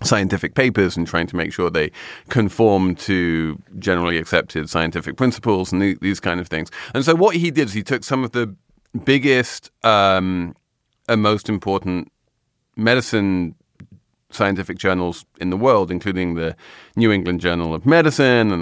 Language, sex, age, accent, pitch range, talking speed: English, male, 30-49, British, 95-125 Hz, 160 wpm